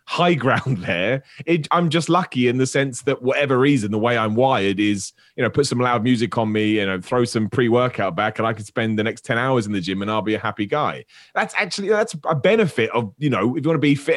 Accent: British